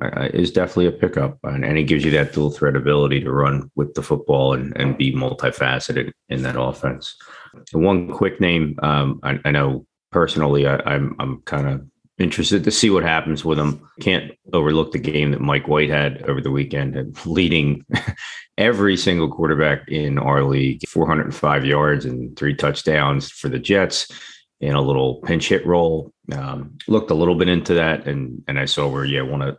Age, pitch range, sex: 30-49, 70-80 Hz, male